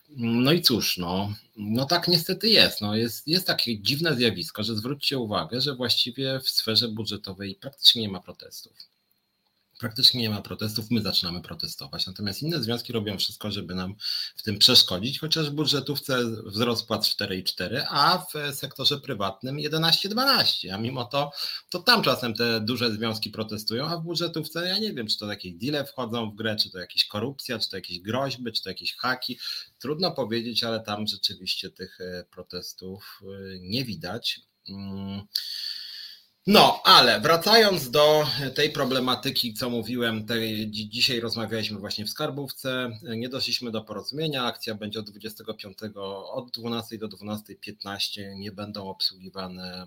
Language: Polish